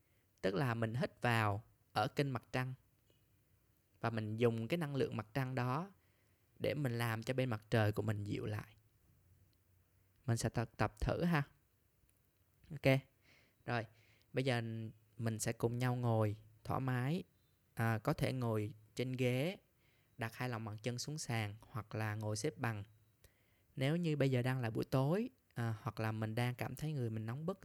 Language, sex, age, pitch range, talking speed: Vietnamese, male, 10-29, 105-125 Hz, 175 wpm